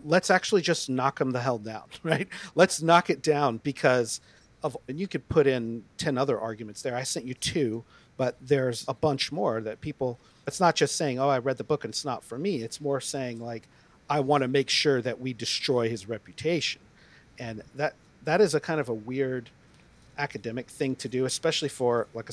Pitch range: 125-155 Hz